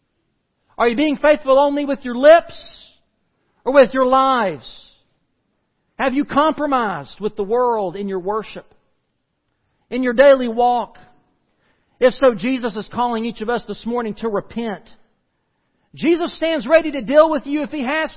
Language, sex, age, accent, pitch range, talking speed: English, male, 40-59, American, 155-245 Hz, 155 wpm